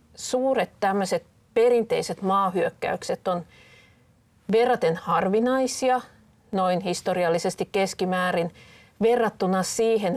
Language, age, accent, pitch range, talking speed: Finnish, 40-59, native, 175-220 Hz, 70 wpm